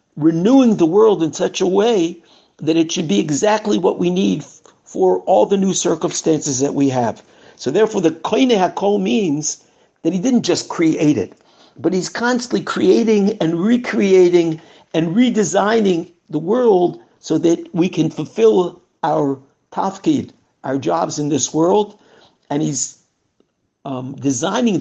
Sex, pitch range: male, 150-195 Hz